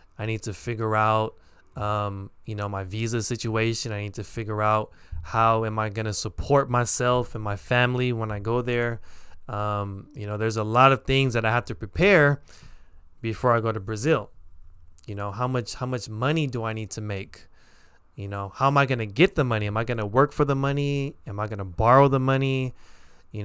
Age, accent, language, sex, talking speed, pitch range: 20-39, American, English, male, 220 wpm, 100-130 Hz